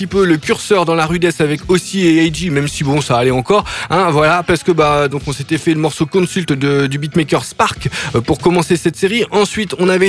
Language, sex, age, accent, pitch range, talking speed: French, male, 20-39, French, 140-180 Hz, 225 wpm